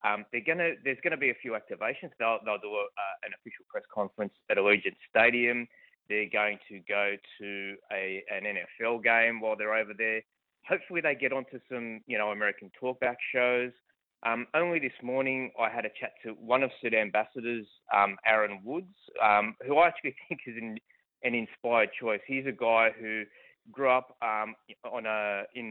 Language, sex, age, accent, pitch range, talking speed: English, male, 20-39, Australian, 110-130 Hz, 190 wpm